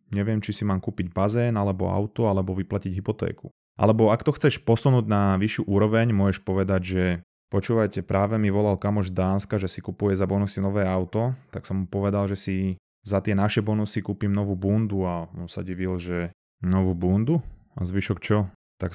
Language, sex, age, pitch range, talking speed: Slovak, male, 20-39, 95-110 Hz, 185 wpm